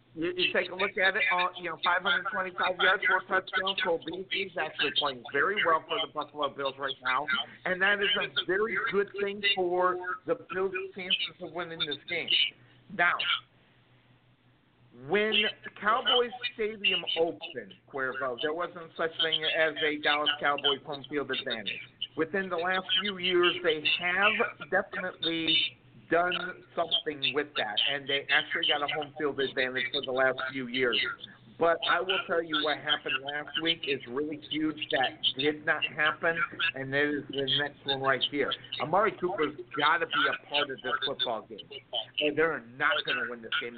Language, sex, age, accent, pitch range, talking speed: English, male, 50-69, American, 140-185 Hz, 170 wpm